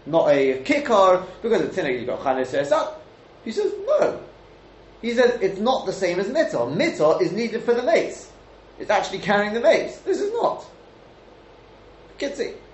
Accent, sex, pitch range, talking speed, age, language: British, male, 150-250 Hz, 170 wpm, 30-49, English